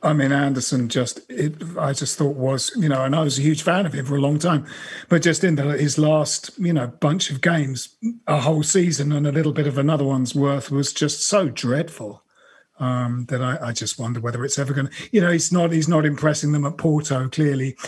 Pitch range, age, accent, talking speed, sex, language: 140-175 Hz, 40-59, British, 240 wpm, male, English